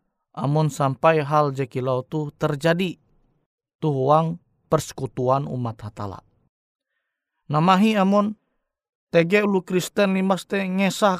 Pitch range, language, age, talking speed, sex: 135-180 Hz, Indonesian, 20-39, 95 wpm, male